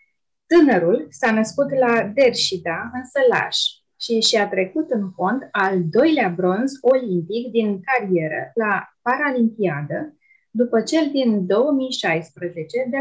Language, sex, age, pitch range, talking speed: Romanian, female, 20-39, 200-260 Hz, 120 wpm